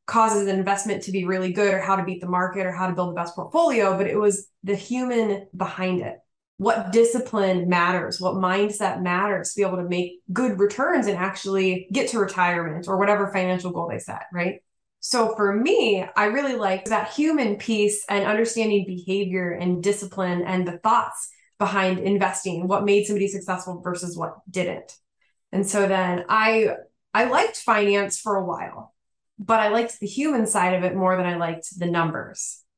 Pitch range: 185-220 Hz